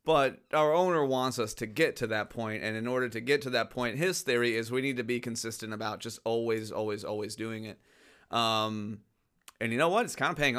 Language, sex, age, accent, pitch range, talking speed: English, male, 30-49, American, 115-135 Hz, 240 wpm